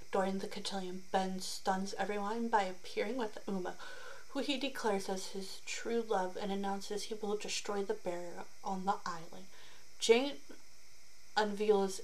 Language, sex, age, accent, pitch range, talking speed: English, female, 30-49, American, 195-230 Hz, 145 wpm